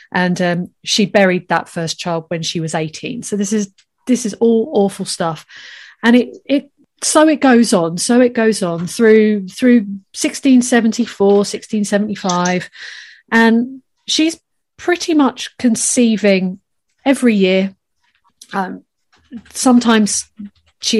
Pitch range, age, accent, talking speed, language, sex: 185-235 Hz, 30-49, British, 125 wpm, English, female